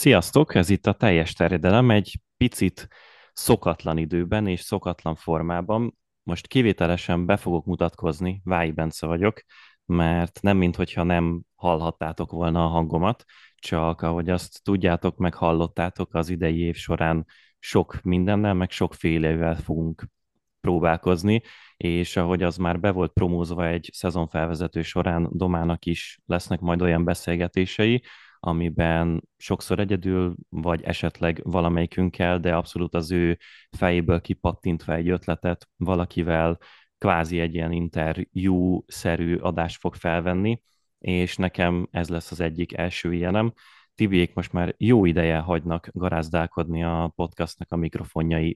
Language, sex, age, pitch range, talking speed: Hungarian, male, 20-39, 85-90 Hz, 125 wpm